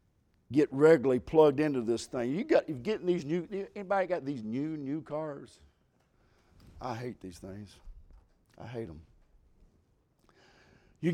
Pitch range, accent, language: 130-200 Hz, American, English